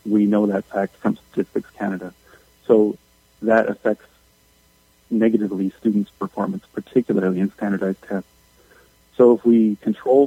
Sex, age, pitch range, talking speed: male, 40-59, 95-115 Hz, 125 wpm